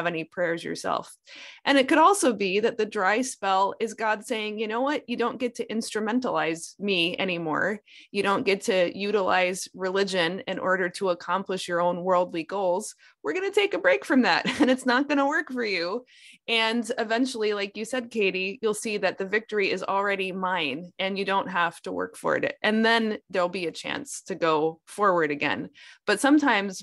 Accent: American